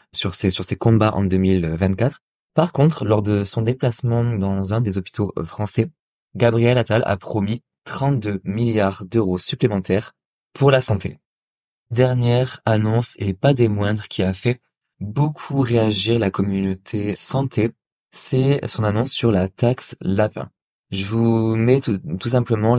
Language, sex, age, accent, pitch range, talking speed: French, male, 20-39, French, 105-130 Hz, 145 wpm